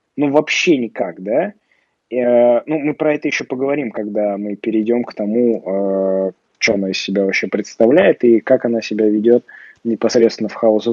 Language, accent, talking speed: Russian, native, 170 wpm